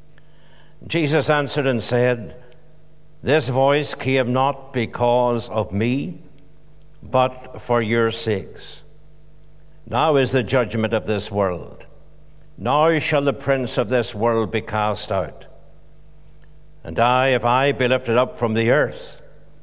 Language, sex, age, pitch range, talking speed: English, male, 60-79, 110-140 Hz, 130 wpm